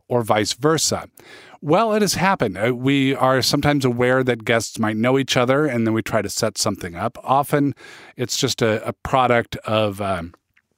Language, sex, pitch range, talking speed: English, male, 110-135 Hz, 185 wpm